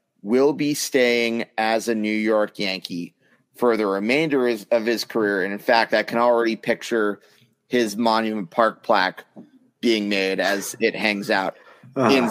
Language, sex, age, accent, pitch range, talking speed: English, male, 30-49, American, 110-135 Hz, 155 wpm